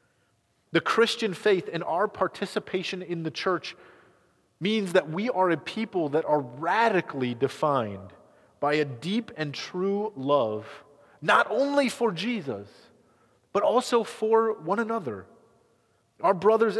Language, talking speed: English, 130 wpm